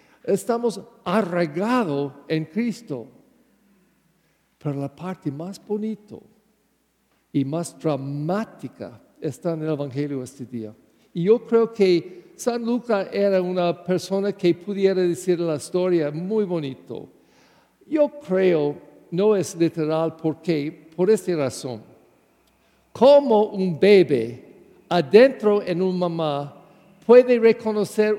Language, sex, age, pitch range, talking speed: English, male, 50-69, 170-215 Hz, 110 wpm